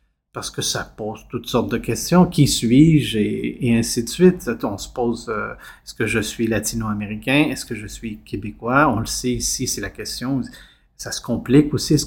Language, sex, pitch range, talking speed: French, male, 110-140 Hz, 200 wpm